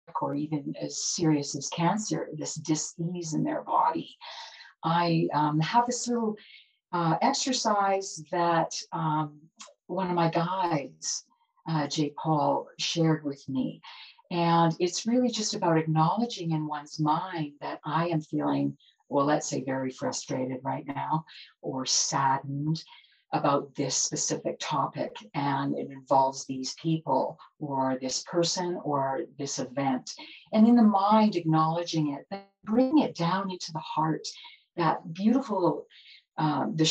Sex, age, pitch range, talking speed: female, 50-69, 150-205 Hz, 135 wpm